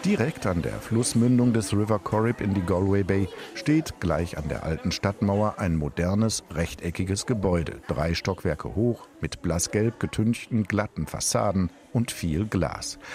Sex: male